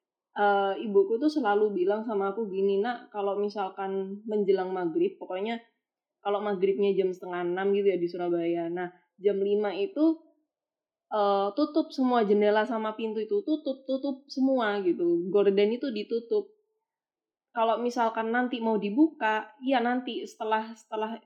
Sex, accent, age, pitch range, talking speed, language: female, native, 20-39, 200-265 Hz, 140 wpm, Indonesian